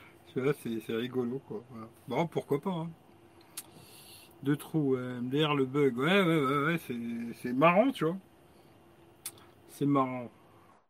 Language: French